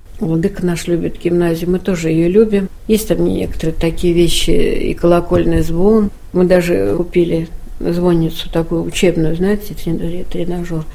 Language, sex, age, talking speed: Russian, female, 60-79, 130 wpm